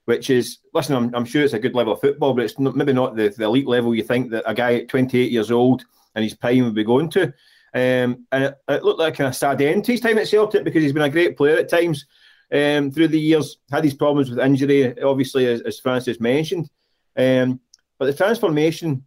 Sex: male